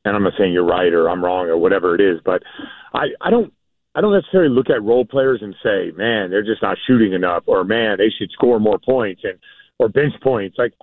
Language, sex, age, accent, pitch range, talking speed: English, male, 40-59, American, 115-165 Hz, 245 wpm